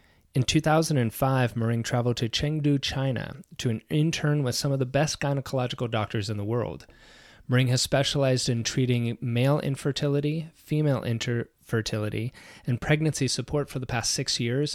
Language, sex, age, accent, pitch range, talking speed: English, male, 30-49, American, 115-140 Hz, 150 wpm